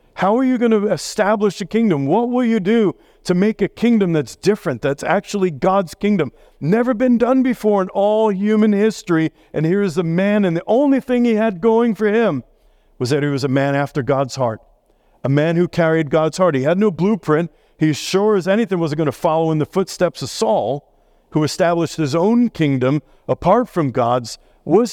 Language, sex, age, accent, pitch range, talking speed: English, male, 50-69, American, 140-190 Hz, 205 wpm